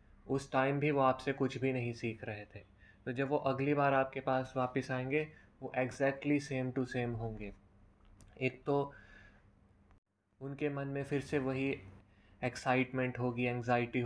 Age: 20-39